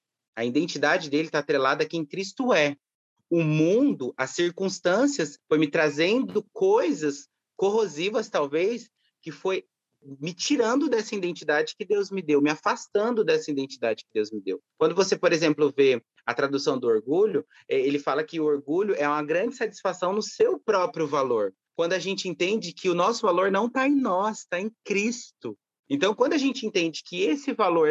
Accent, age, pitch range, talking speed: Brazilian, 30-49, 155-220 Hz, 175 wpm